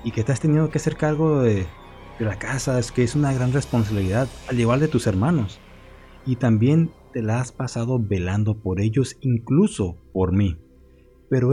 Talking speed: 185 wpm